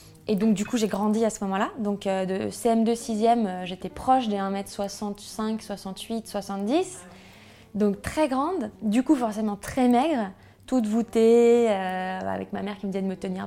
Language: French